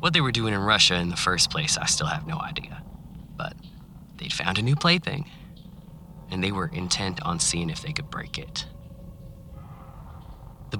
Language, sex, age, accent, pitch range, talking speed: English, male, 20-39, American, 110-165 Hz, 185 wpm